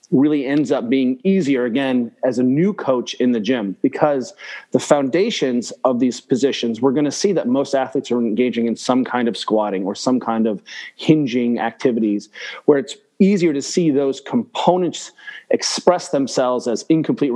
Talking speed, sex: 175 wpm, male